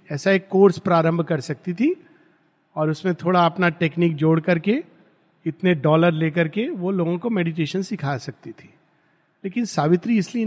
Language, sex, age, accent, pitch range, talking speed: Hindi, male, 50-69, native, 155-210 Hz, 160 wpm